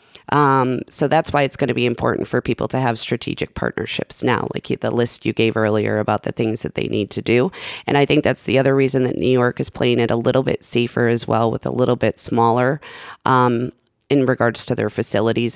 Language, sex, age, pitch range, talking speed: English, female, 20-39, 120-150 Hz, 230 wpm